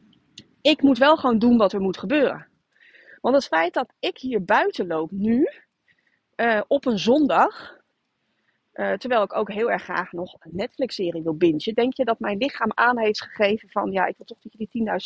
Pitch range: 195-270 Hz